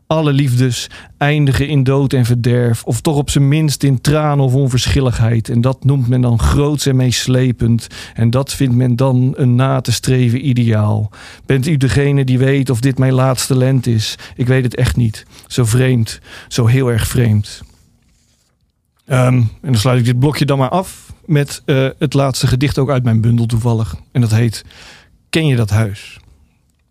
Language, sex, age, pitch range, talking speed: Dutch, male, 40-59, 115-140 Hz, 185 wpm